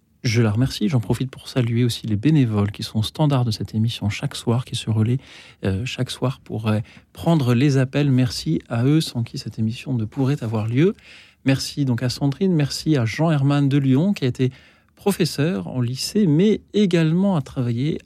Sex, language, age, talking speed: male, French, 40-59, 195 wpm